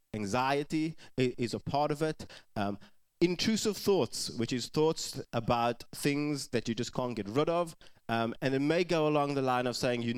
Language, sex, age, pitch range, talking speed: English, male, 20-39, 120-150 Hz, 190 wpm